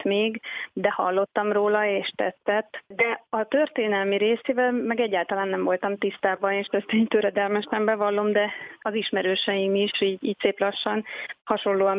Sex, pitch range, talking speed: female, 190-210 Hz, 140 wpm